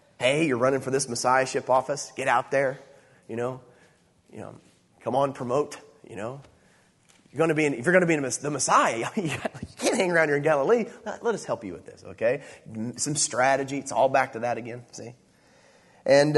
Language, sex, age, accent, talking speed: English, male, 30-49, American, 205 wpm